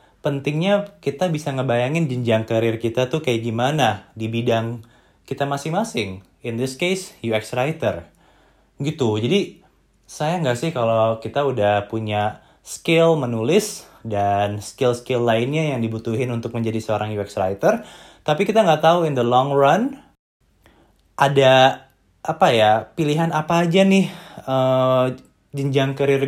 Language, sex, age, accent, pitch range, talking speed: Indonesian, male, 20-39, native, 115-150 Hz, 130 wpm